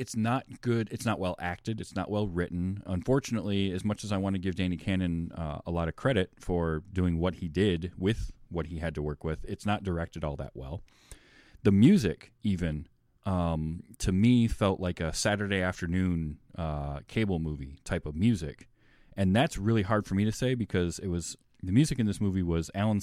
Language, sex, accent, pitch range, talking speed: English, male, American, 85-115 Hz, 205 wpm